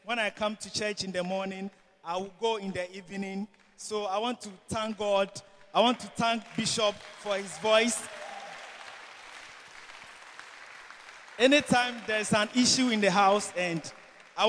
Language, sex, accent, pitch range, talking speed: English, male, Nigerian, 190-225 Hz, 155 wpm